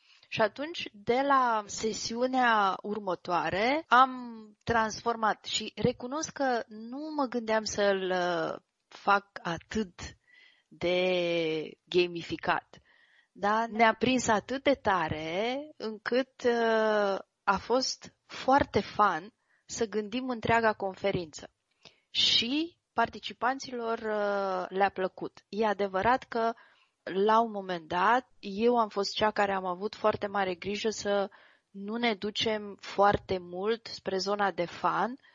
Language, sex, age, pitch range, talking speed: Romanian, female, 20-39, 190-230 Hz, 110 wpm